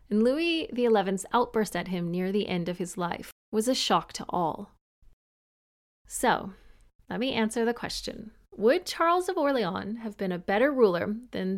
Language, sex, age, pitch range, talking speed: English, female, 30-49, 190-245 Hz, 170 wpm